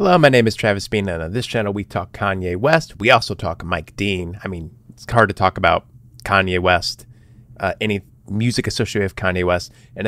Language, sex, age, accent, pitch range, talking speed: English, male, 30-49, American, 95-120 Hz, 215 wpm